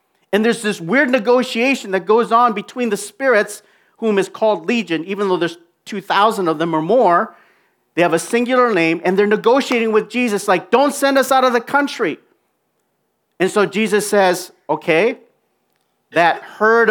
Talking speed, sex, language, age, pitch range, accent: 170 wpm, male, English, 40-59, 185-245 Hz, American